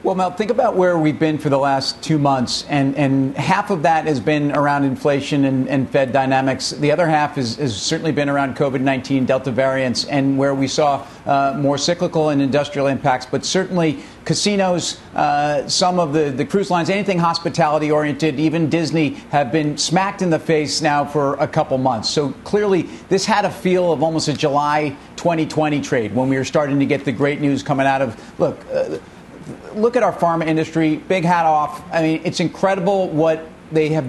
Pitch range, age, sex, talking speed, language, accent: 140-165 Hz, 50-69, male, 195 wpm, English, American